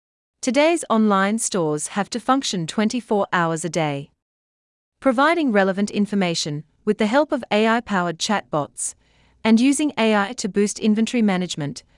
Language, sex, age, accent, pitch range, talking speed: English, female, 40-59, Australian, 160-235 Hz, 130 wpm